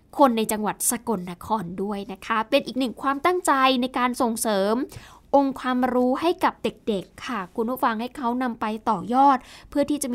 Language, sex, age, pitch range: Thai, female, 10-29, 215-270 Hz